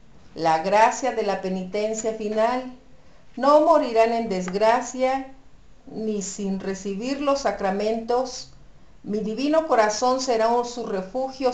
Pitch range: 180-240 Hz